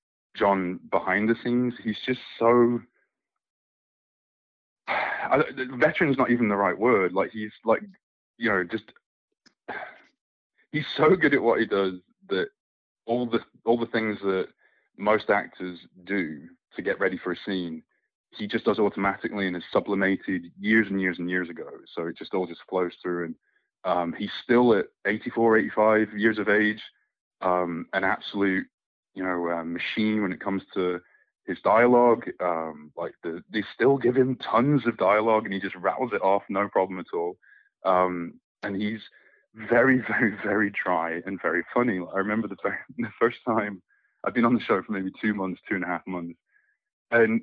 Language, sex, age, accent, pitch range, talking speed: English, male, 20-39, British, 95-120 Hz, 175 wpm